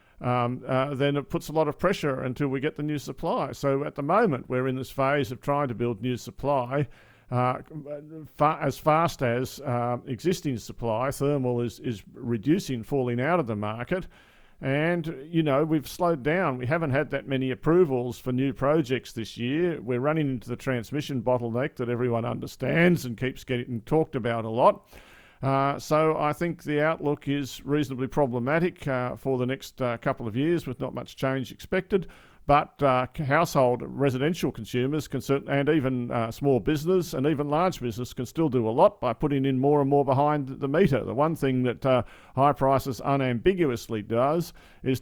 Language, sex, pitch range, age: English, male, 125-150 Hz, 50-69